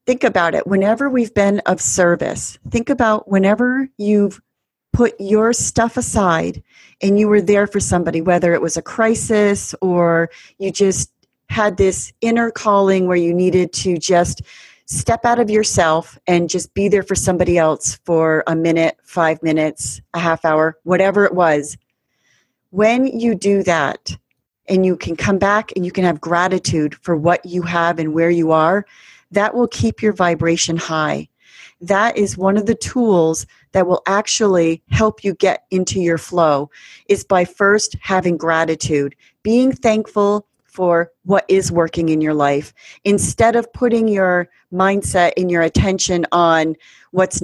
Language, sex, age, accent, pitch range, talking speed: English, female, 40-59, American, 165-205 Hz, 160 wpm